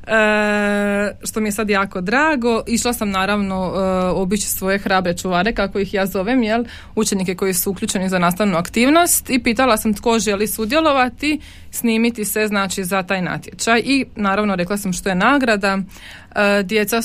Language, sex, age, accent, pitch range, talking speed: Croatian, female, 20-39, native, 195-225 Hz, 170 wpm